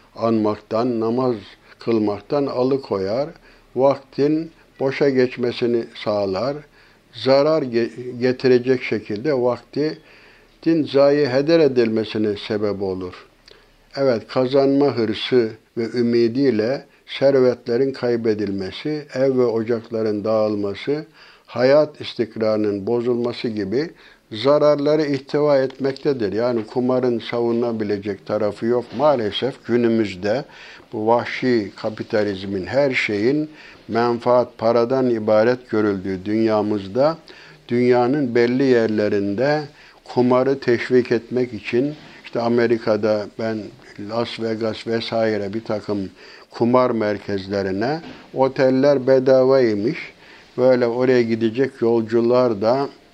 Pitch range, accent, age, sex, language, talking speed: 110-130 Hz, native, 60-79, male, Turkish, 85 wpm